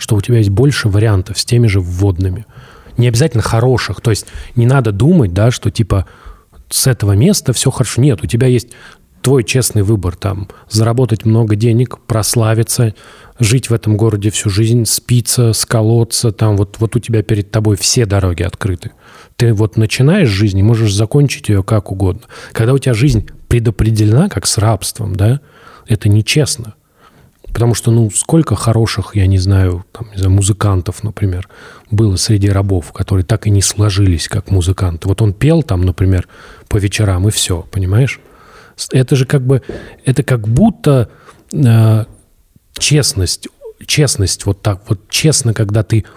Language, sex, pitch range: Russian, male, 100-120 Hz